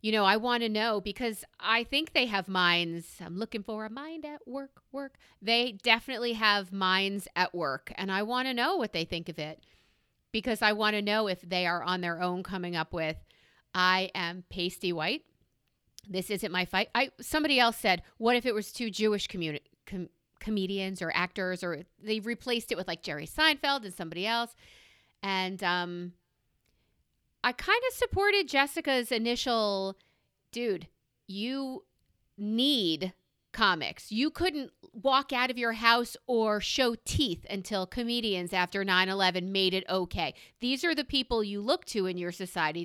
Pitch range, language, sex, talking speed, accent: 180-235 Hz, English, female, 170 wpm, American